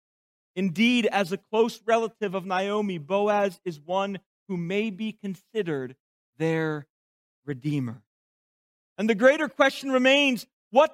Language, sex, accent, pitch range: English, male, American, 200-275 Hz